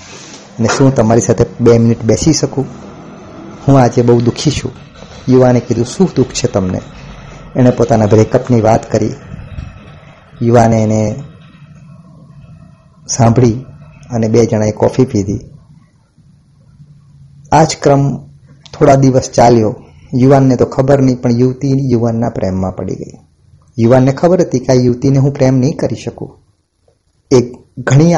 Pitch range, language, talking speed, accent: 115-150 Hz, Gujarati, 105 wpm, native